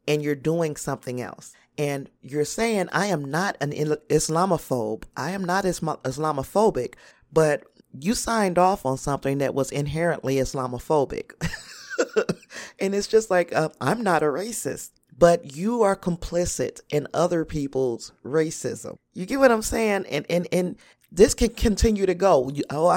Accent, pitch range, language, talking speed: American, 140-175 Hz, English, 150 wpm